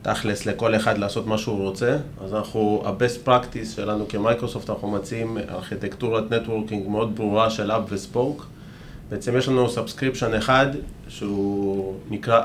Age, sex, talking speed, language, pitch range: 30-49, male, 140 wpm, Hebrew, 105-125 Hz